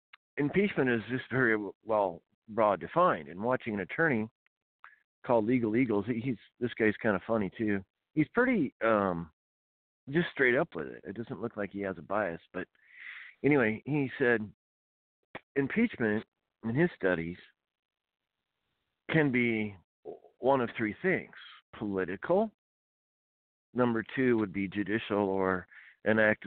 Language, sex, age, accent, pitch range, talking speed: English, male, 50-69, American, 95-125 Hz, 135 wpm